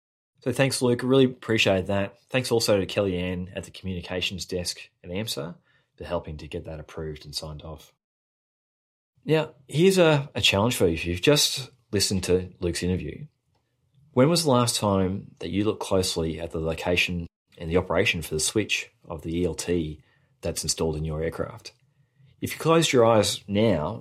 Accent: Australian